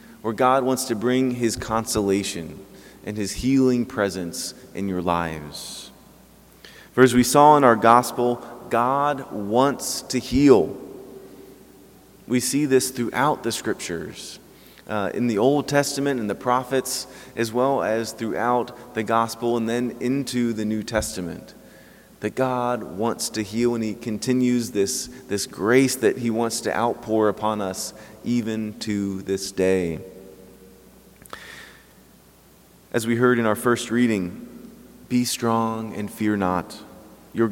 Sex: male